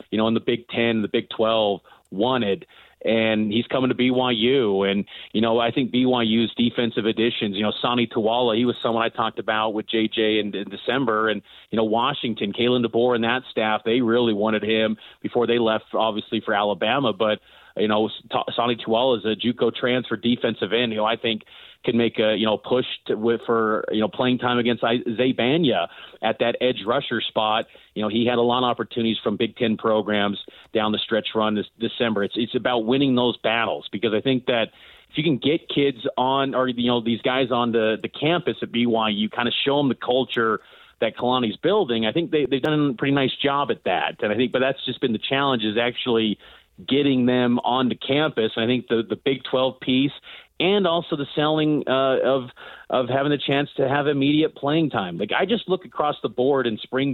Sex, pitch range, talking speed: male, 110-130 Hz, 215 wpm